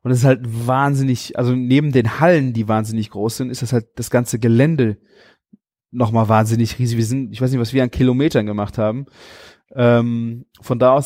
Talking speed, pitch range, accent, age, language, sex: 200 wpm, 120-140 Hz, German, 30-49, German, male